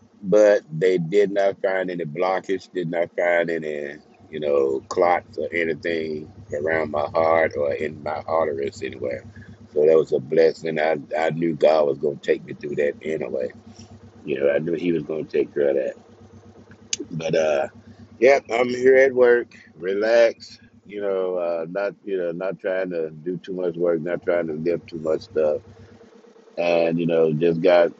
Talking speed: 180 wpm